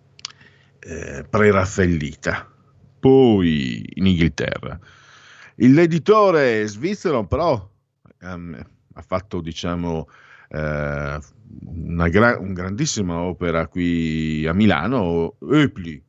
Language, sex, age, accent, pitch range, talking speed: Italian, male, 50-69, native, 85-130 Hz, 90 wpm